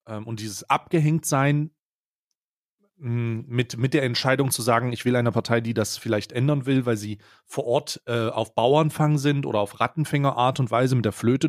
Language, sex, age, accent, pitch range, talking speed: German, male, 30-49, German, 115-145 Hz, 185 wpm